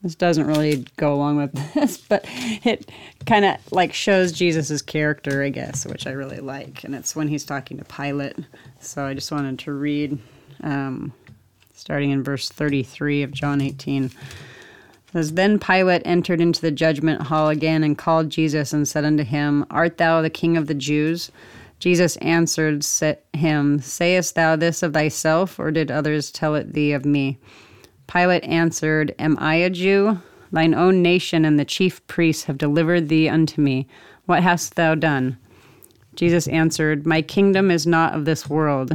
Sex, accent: female, American